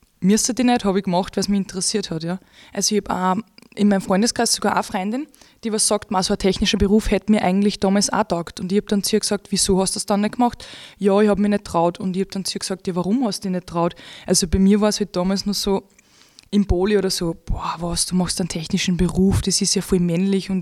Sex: female